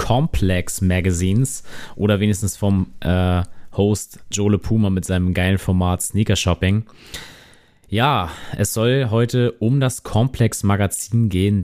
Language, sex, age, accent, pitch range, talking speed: German, male, 30-49, German, 90-110 Hz, 125 wpm